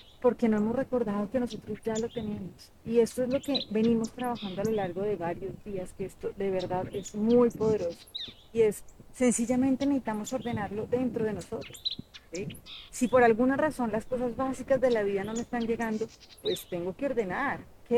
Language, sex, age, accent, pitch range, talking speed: Spanish, female, 30-49, Colombian, 205-250 Hz, 190 wpm